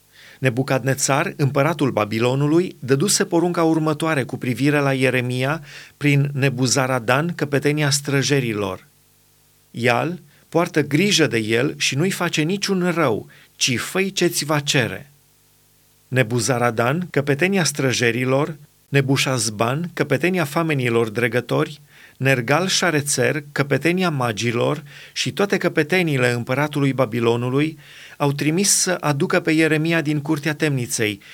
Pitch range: 130-160 Hz